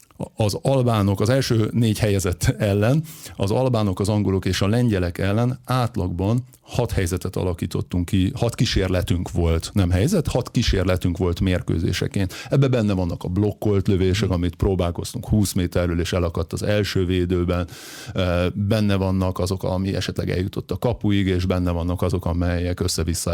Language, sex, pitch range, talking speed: Hungarian, male, 95-120 Hz, 150 wpm